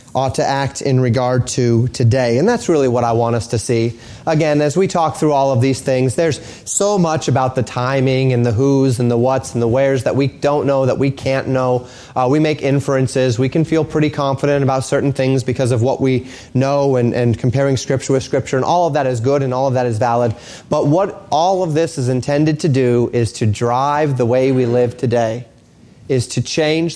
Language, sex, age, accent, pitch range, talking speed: English, male, 30-49, American, 125-155 Hz, 230 wpm